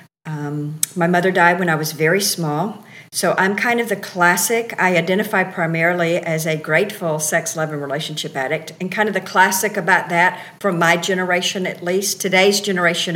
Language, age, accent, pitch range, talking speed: English, 50-69, American, 155-175 Hz, 180 wpm